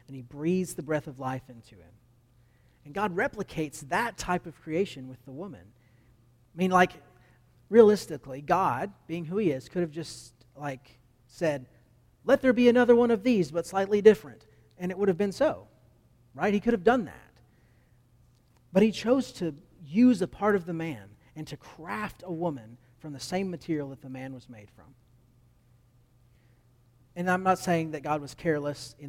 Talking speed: 185 wpm